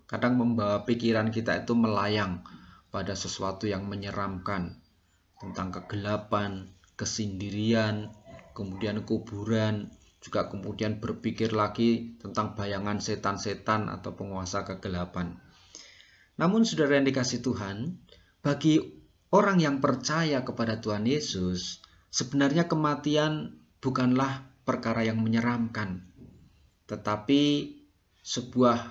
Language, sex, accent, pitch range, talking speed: Indonesian, male, native, 105-135 Hz, 95 wpm